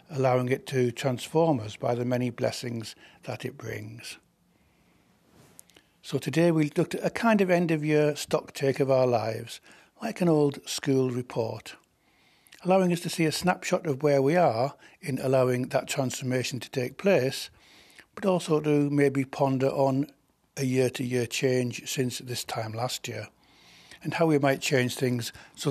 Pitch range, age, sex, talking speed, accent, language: 125-150 Hz, 60-79, male, 170 wpm, British, English